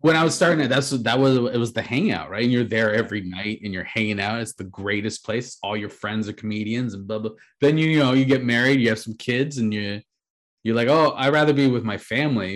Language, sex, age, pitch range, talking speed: English, male, 20-39, 110-135 Hz, 270 wpm